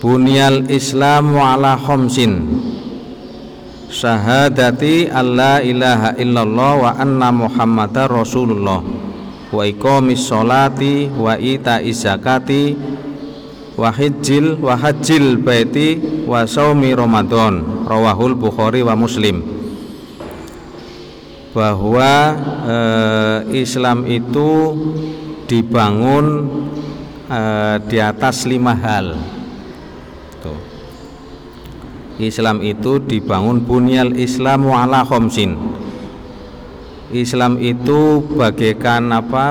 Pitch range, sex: 115-135 Hz, male